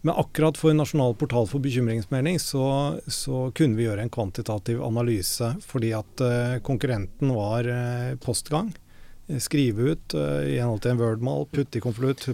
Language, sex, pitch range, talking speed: English, male, 110-140 Hz, 155 wpm